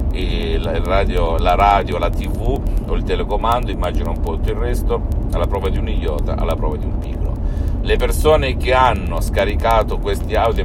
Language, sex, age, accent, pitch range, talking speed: Italian, male, 50-69, native, 75-95 Hz, 175 wpm